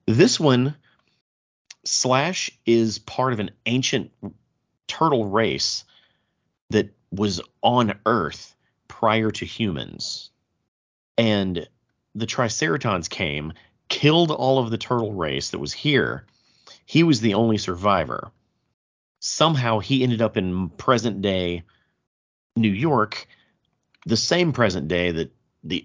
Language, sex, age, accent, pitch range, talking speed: English, male, 40-59, American, 90-120 Hz, 115 wpm